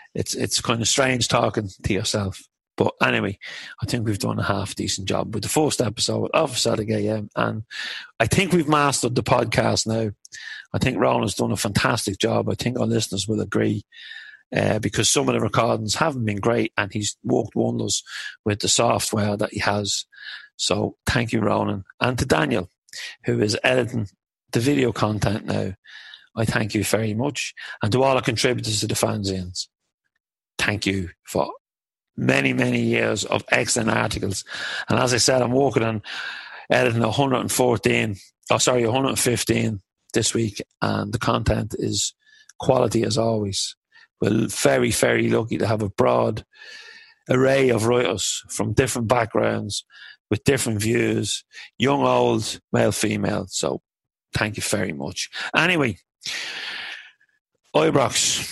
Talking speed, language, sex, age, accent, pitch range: 155 wpm, English, male, 40-59, British, 105-125 Hz